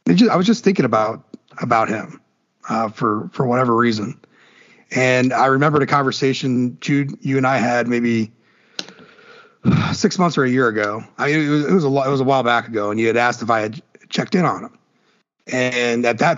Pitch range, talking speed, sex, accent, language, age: 120-145 Hz, 200 wpm, male, American, English, 30-49